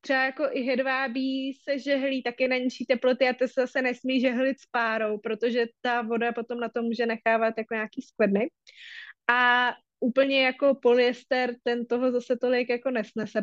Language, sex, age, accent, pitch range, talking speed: Czech, female, 20-39, native, 240-280 Hz, 170 wpm